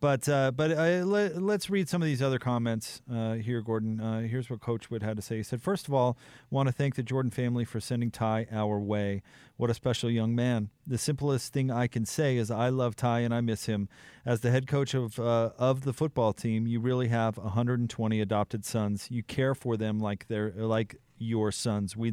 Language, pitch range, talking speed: English, 110-130 Hz, 235 wpm